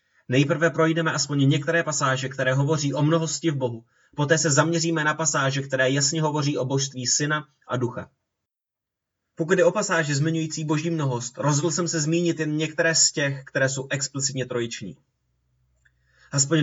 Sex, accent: male, native